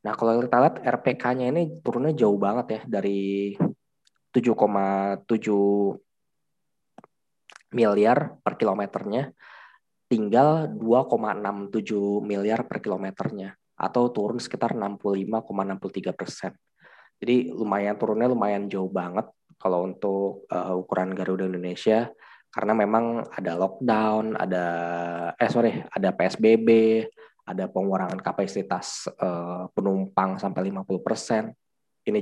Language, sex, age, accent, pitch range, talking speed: Indonesian, male, 20-39, native, 100-120 Hz, 100 wpm